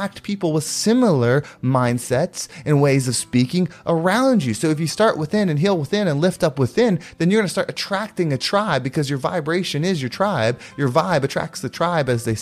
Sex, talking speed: male, 210 wpm